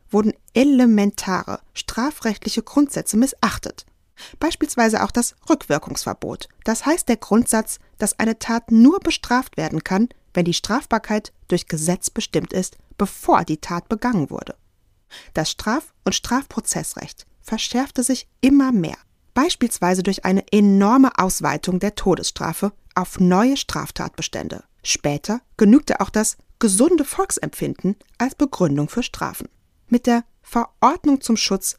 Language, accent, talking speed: German, German, 125 wpm